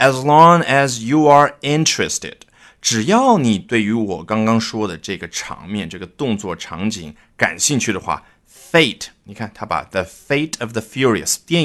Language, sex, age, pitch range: Chinese, male, 30-49, 105-155 Hz